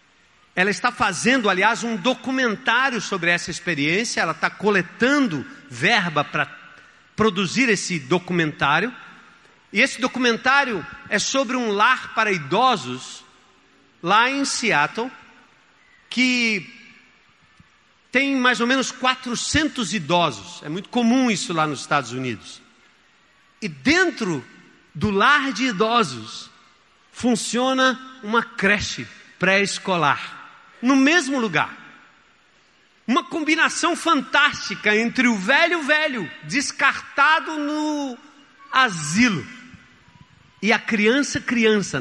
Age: 50-69